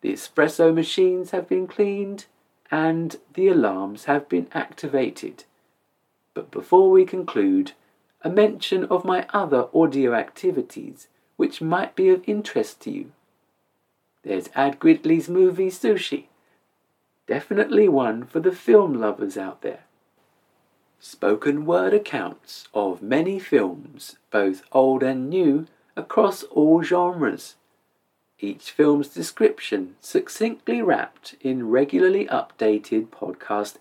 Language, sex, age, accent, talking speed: English, male, 50-69, British, 115 wpm